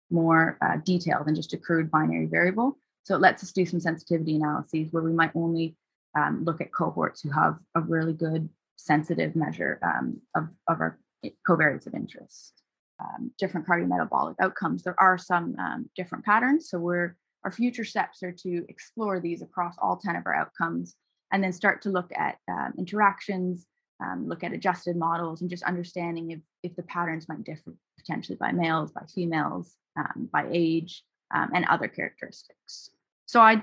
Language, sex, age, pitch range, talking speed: English, female, 20-39, 165-195 Hz, 180 wpm